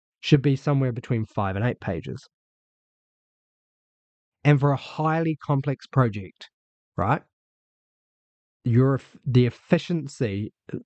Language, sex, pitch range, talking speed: English, male, 115-145 Hz, 100 wpm